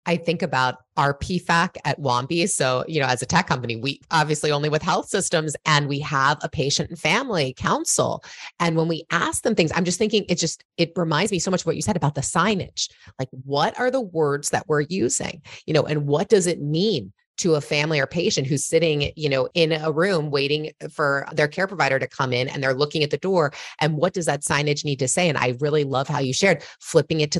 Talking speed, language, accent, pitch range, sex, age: 240 wpm, English, American, 140-180 Hz, female, 30-49